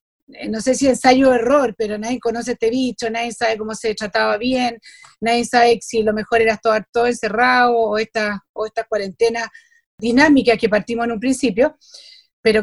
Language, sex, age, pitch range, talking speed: Spanish, female, 40-59, 215-255 Hz, 175 wpm